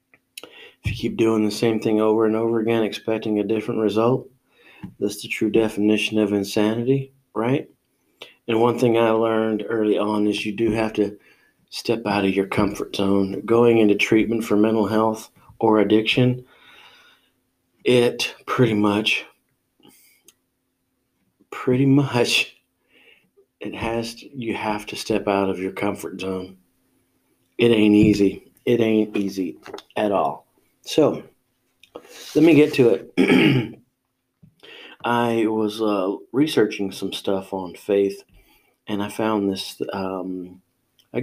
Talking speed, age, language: 135 wpm, 40-59, English